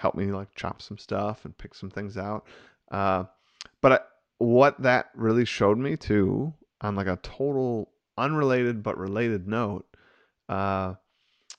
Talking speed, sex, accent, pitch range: 145 wpm, male, American, 100-120 Hz